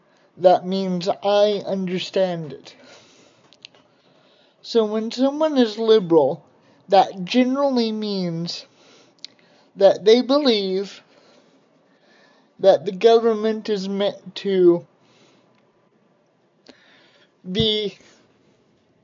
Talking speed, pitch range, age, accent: 75 wpm, 190-220 Hz, 20-39, American